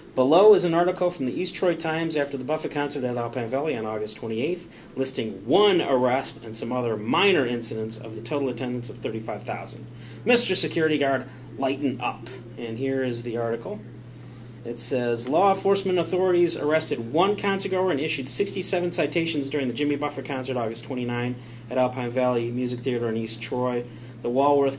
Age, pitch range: 40-59, 125-165 Hz